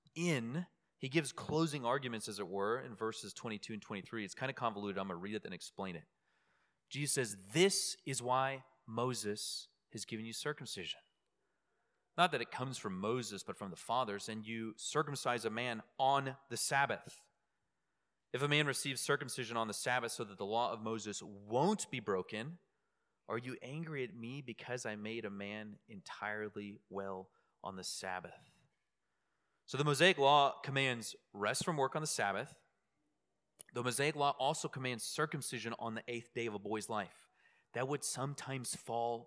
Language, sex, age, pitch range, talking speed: English, male, 30-49, 115-150 Hz, 175 wpm